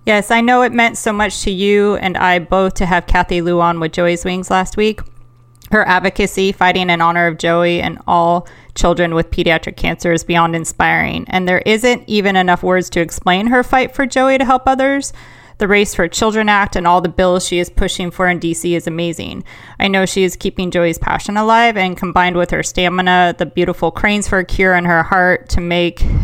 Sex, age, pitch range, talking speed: female, 30-49, 175-205 Hz, 215 wpm